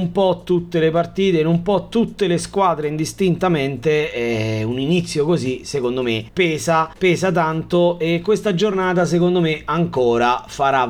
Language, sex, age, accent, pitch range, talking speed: Italian, male, 30-49, native, 130-185 Hz, 150 wpm